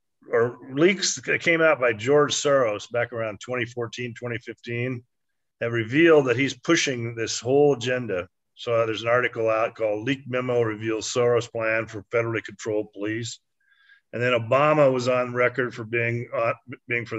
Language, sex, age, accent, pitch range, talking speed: English, male, 50-69, American, 115-145 Hz, 155 wpm